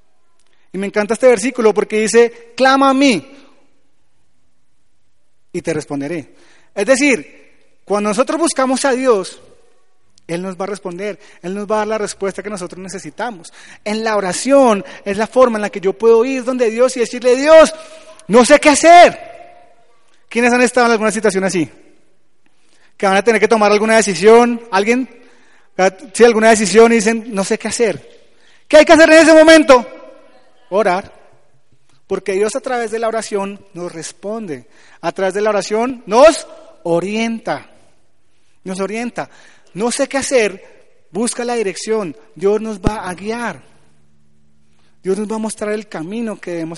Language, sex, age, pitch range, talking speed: Spanish, male, 30-49, 195-265 Hz, 165 wpm